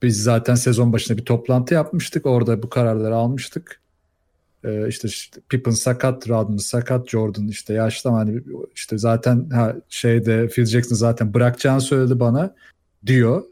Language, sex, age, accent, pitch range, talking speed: Turkish, male, 40-59, native, 115-150 Hz, 150 wpm